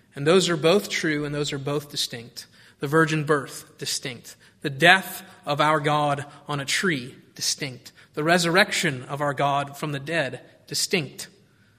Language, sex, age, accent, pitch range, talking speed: English, male, 30-49, American, 140-180 Hz, 165 wpm